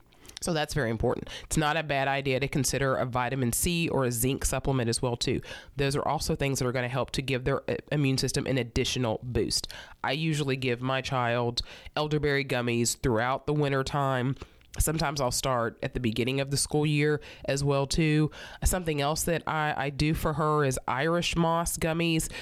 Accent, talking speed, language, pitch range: American, 195 wpm, English, 130-160 Hz